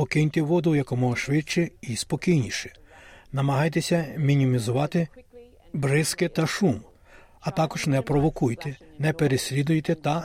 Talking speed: 105 wpm